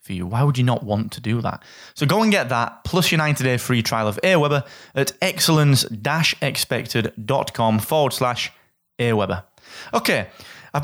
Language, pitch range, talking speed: English, 115-150 Hz, 160 wpm